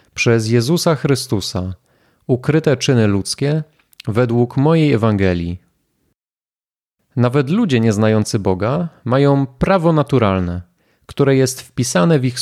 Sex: male